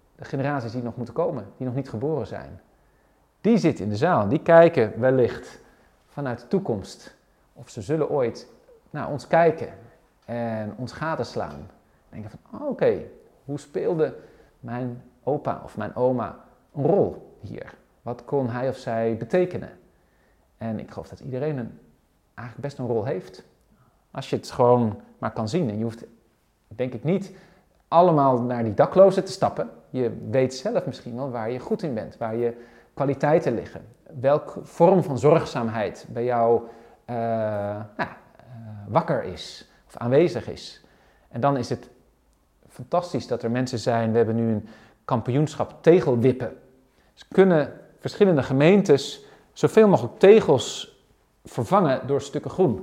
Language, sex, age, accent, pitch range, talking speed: Dutch, male, 40-59, Dutch, 115-150 Hz, 155 wpm